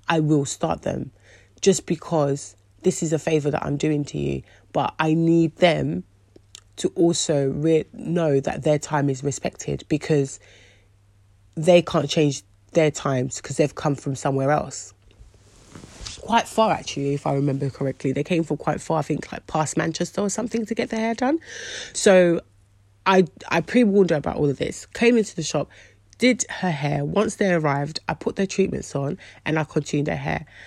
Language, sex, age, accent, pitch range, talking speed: English, female, 30-49, British, 135-190 Hz, 180 wpm